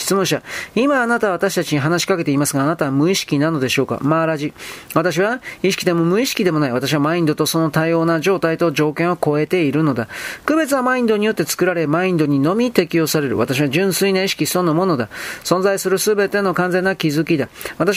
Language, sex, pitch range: Japanese, male, 160-195 Hz